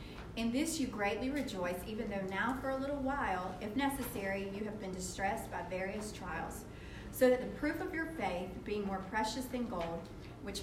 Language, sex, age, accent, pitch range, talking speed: English, female, 40-59, American, 190-250 Hz, 190 wpm